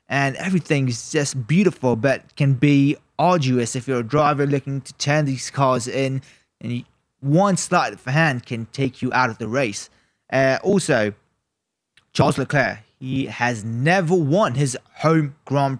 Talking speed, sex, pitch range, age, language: 160 wpm, male, 125-155 Hz, 20-39, English